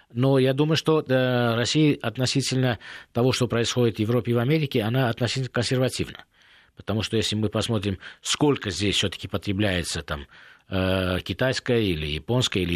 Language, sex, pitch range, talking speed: Russian, male, 100-130 Hz, 140 wpm